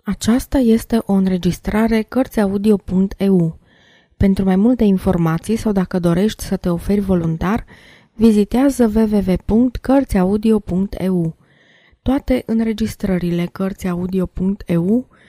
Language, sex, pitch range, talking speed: Romanian, female, 170-215 Hz, 80 wpm